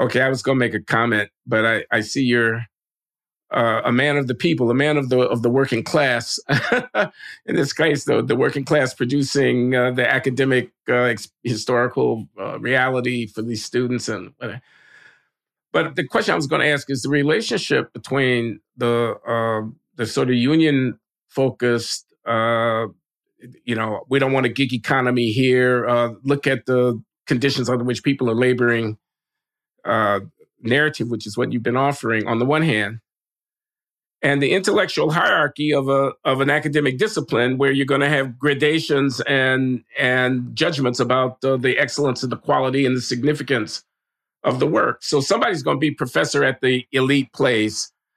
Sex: male